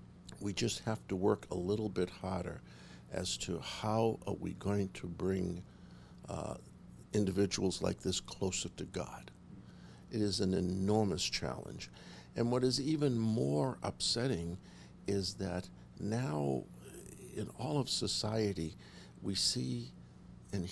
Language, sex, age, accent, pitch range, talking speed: English, male, 60-79, American, 70-110 Hz, 130 wpm